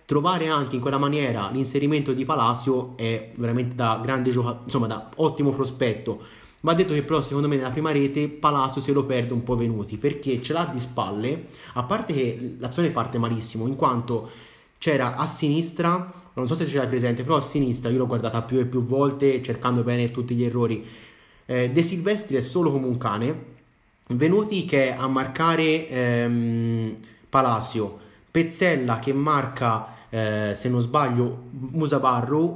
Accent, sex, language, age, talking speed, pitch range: native, male, Italian, 30-49, 170 wpm, 120-150 Hz